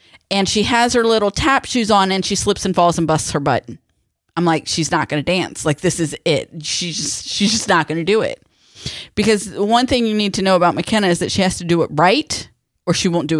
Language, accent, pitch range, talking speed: English, American, 165-215 Hz, 260 wpm